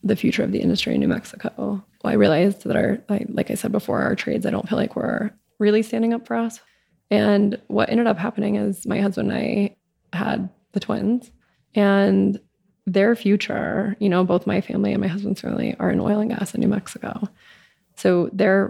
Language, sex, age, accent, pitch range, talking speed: English, female, 20-39, American, 200-225 Hz, 210 wpm